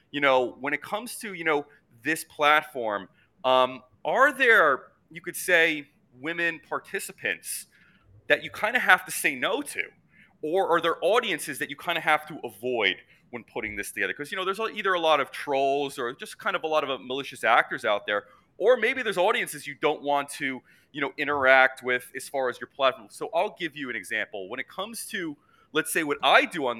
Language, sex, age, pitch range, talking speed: English, male, 30-49, 125-165 Hz, 215 wpm